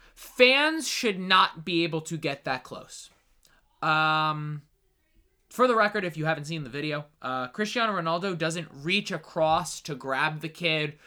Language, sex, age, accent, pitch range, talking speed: English, male, 20-39, American, 155-200 Hz, 155 wpm